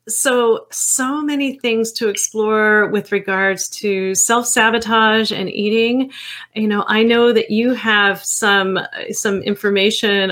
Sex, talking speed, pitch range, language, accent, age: female, 130 wpm, 195-235 Hz, English, American, 30-49